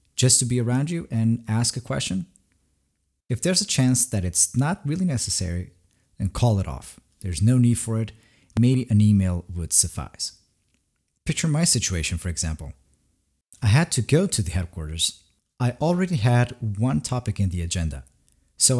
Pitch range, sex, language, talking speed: 90-125 Hz, male, English, 170 wpm